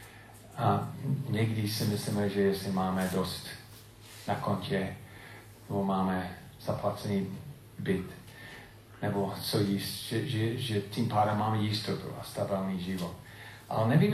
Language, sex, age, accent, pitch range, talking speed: Czech, male, 40-59, native, 100-120 Hz, 125 wpm